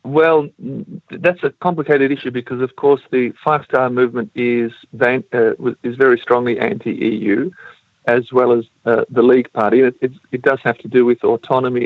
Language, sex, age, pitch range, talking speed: English, male, 50-69, 120-135 Hz, 170 wpm